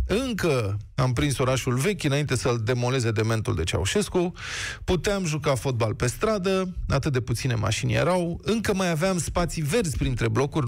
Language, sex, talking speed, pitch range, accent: Romanian, male, 165 wpm, 115-165 Hz, native